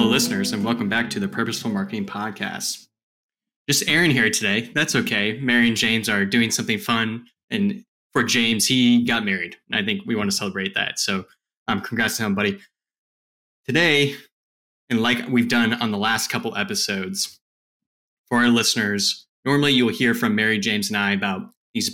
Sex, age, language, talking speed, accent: male, 20-39, English, 175 wpm, American